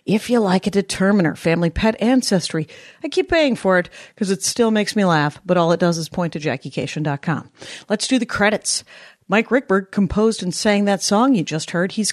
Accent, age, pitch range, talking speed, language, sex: American, 40-59, 170-235 Hz, 210 wpm, English, female